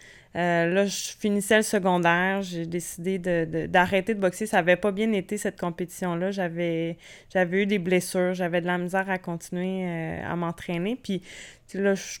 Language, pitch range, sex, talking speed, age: French, 170-195 Hz, female, 170 wpm, 20-39